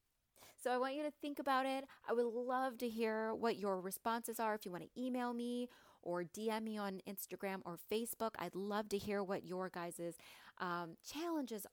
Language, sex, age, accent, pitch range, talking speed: English, female, 30-49, American, 185-245 Hz, 195 wpm